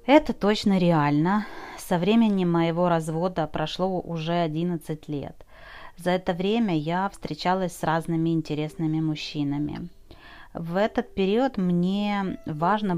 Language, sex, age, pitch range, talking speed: Russian, female, 30-49, 165-200 Hz, 115 wpm